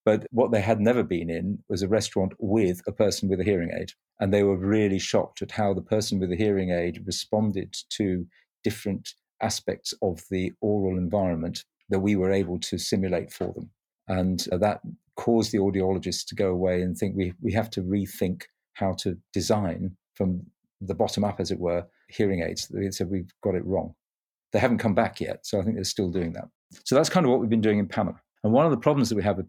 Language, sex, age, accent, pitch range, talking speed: English, male, 50-69, British, 95-110 Hz, 225 wpm